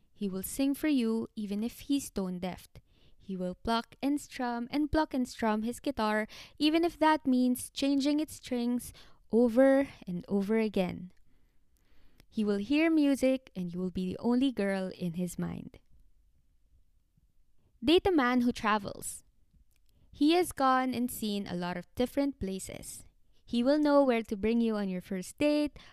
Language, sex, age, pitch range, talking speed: Filipino, female, 20-39, 210-280 Hz, 165 wpm